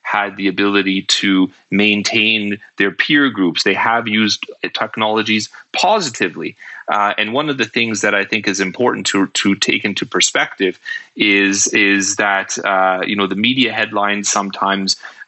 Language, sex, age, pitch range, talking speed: English, male, 30-49, 100-115 Hz, 155 wpm